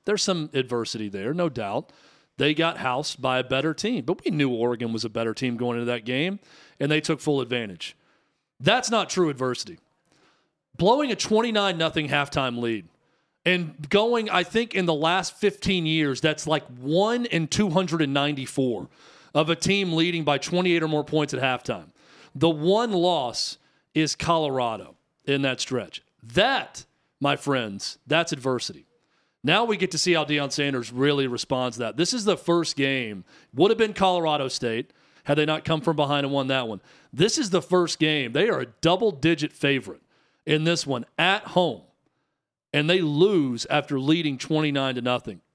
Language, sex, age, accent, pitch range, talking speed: English, male, 40-59, American, 135-175 Hz, 175 wpm